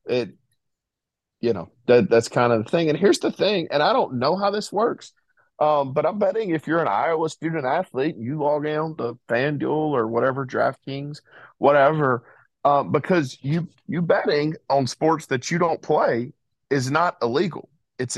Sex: male